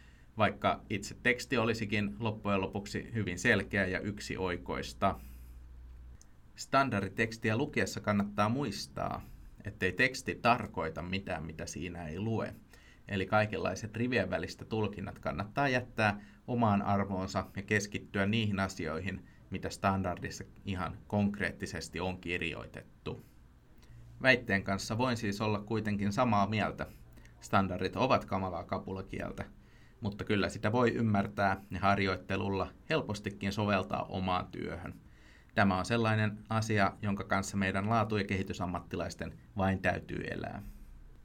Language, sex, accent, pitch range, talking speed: Finnish, male, native, 90-110 Hz, 110 wpm